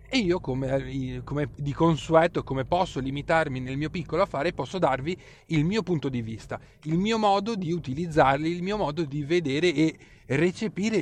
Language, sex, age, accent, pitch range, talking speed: Italian, male, 30-49, native, 130-175 Hz, 175 wpm